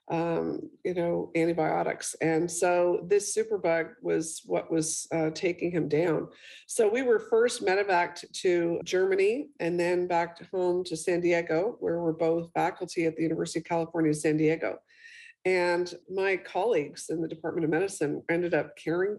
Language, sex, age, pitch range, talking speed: English, female, 50-69, 165-195 Hz, 165 wpm